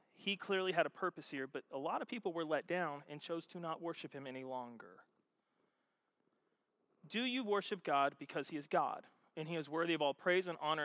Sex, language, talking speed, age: male, English, 215 wpm, 30-49